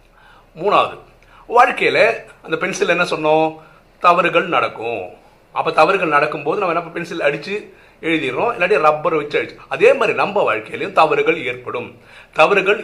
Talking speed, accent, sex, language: 110 wpm, native, male, Tamil